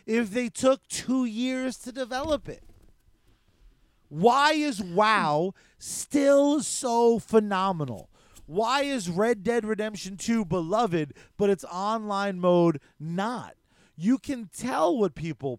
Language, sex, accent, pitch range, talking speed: English, male, American, 180-245 Hz, 120 wpm